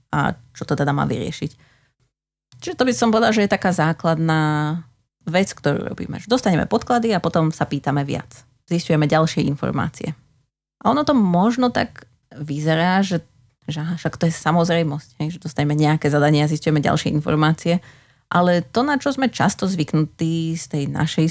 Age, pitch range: 30-49, 145-170 Hz